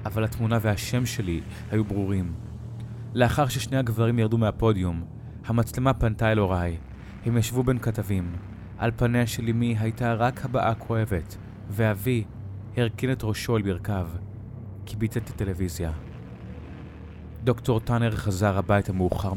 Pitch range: 95-115 Hz